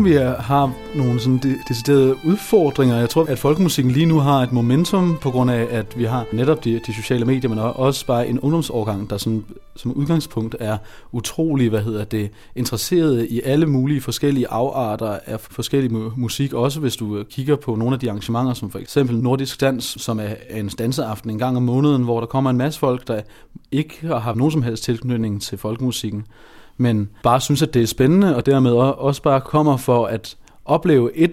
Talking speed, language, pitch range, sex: 200 wpm, Danish, 115-140 Hz, male